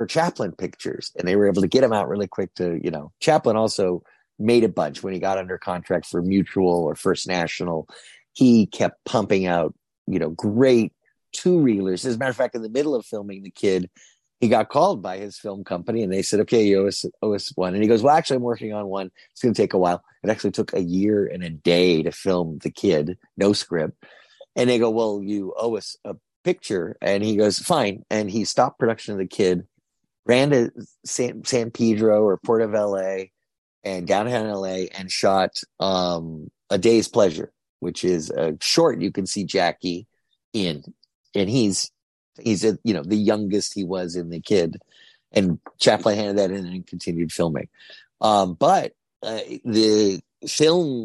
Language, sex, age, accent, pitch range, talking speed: English, male, 30-49, American, 95-115 Hz, 200 wpm